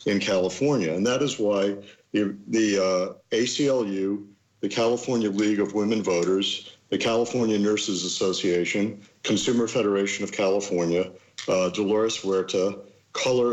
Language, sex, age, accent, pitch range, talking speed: English, male, 50-69, American, 95-110 Hz, 125 wpm